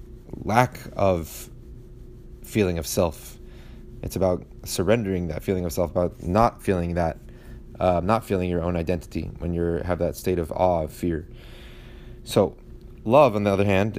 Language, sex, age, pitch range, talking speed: English, male, 30-49, 90-110 Hz, 160 wpm